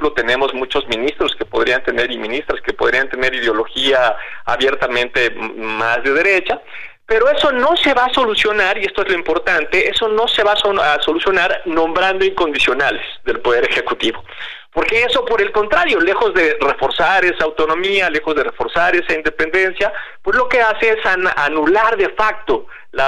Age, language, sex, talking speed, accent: 40-59, Spanish, male, 165 wpm, Mexican